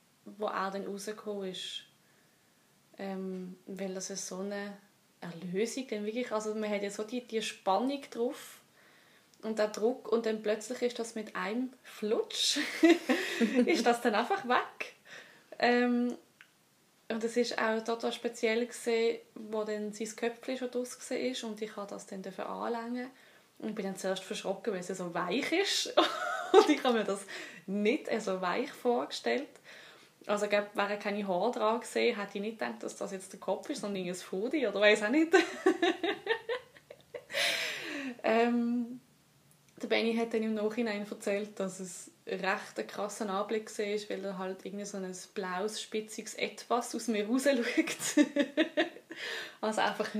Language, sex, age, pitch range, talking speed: German, female, 20-39, 205-250 Hz, 160 wpm